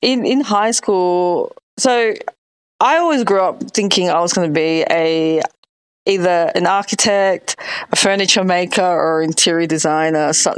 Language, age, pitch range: English, 20-39, 180-250 Hz